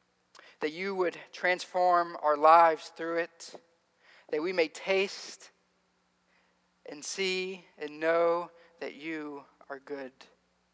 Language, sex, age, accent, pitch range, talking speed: English, male, 40-59, American, 145-195 Hz, 110 wpm